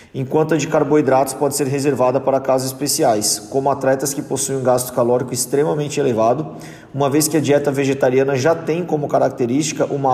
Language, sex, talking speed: Portuguese, male, 180 wpm